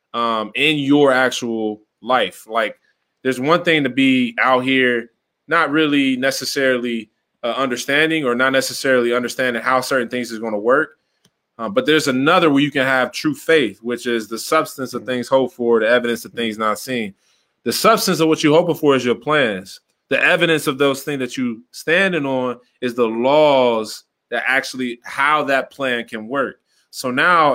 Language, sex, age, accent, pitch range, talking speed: English, male, 20-39, American, 120-145 Hz, 180 wpm